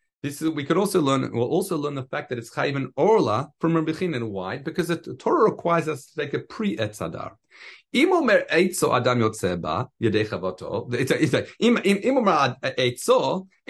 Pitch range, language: 125-185 Hz, English